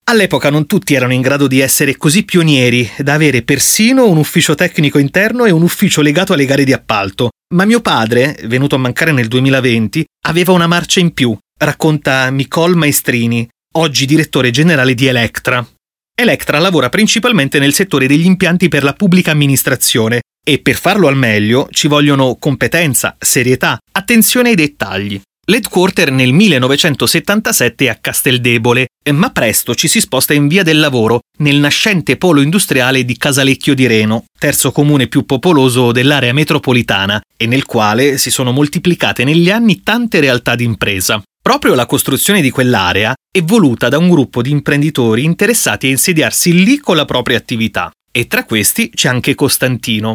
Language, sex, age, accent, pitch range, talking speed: Italian, male, 30-49, native, 125-165 Hz, 160 wpm